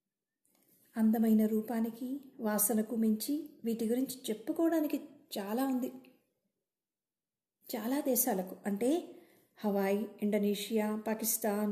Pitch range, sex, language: 220-280 Hz, female, Telugu